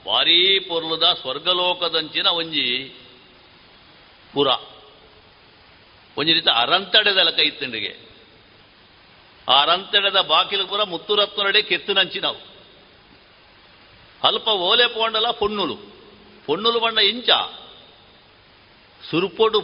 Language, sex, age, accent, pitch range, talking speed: Kannada, male, 60-79, native, 145-205 Hz, 80 wpm